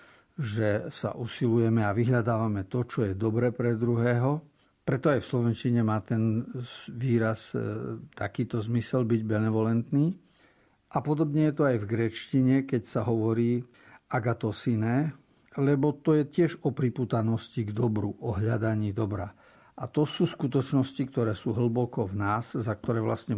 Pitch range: 110-130 Hz